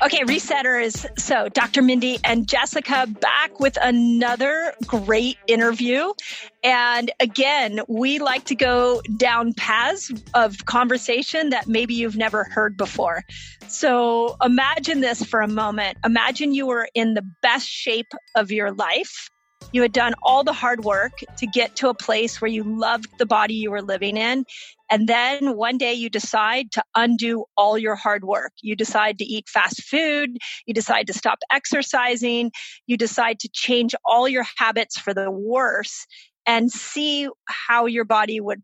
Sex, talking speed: female, 160 wpm